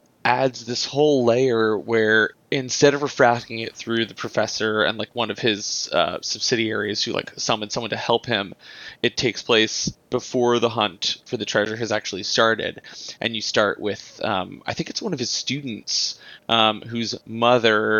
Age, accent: 20-39, American